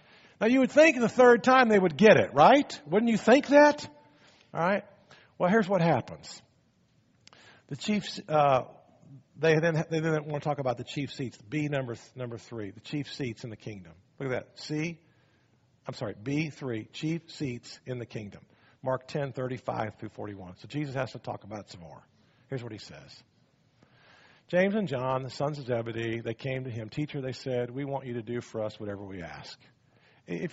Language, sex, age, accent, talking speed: English, male, 50-69, American, 205 wpm